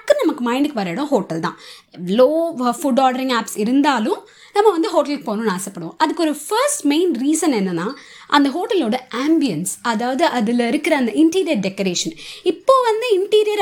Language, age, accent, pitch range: Tamil, 20-39, native, 220-325 Hz